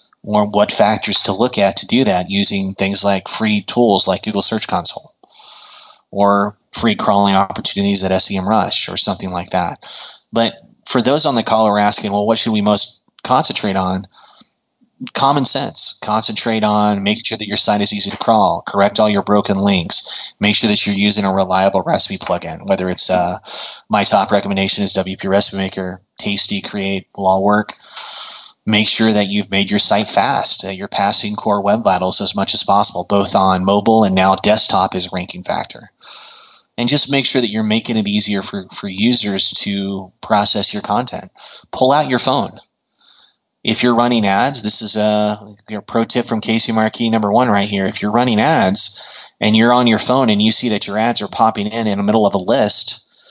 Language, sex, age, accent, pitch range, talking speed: English, male, 20-39, American, 100-110 Hz, 195 wpm